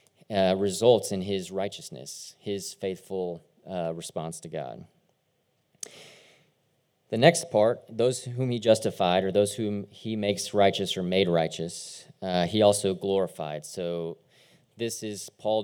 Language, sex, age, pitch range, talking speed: English, male, 30-49, 90-110 Hz, 135 wpm